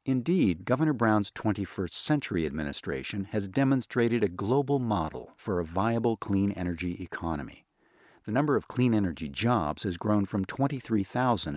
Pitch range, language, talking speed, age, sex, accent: 95-130 Hz, English, 140 wpm, 50-69, male, American